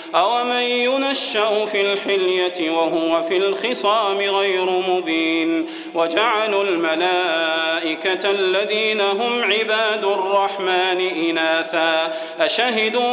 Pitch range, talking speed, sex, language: 175-210 Hz, 80 wpm, male, Arabic